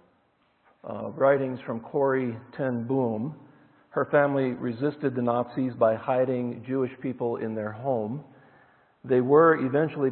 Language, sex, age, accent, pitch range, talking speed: English, male, 50-69, American, 120-140 Hz, 125 wpm